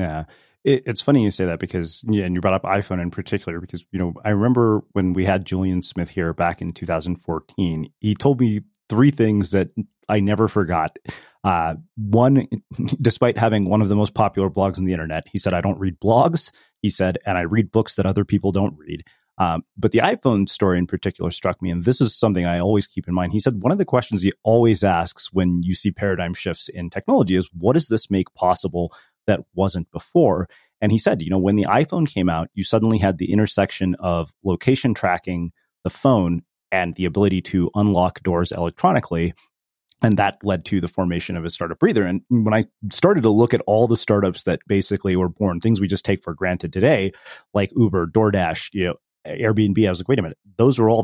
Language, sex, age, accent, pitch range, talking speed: English, male, 30-49, American, 90-110 Hz, 215 wpm